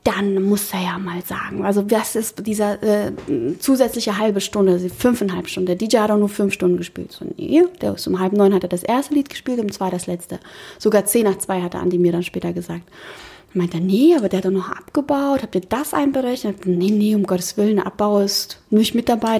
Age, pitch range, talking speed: 30-49, 190-235 Hz, 245 wpm